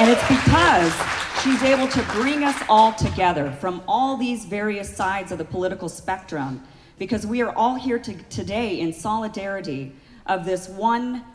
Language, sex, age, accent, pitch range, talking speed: English, female, 40-59, American, 165-215 Hz, 160 wpm